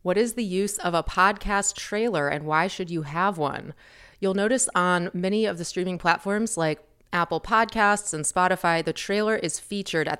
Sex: female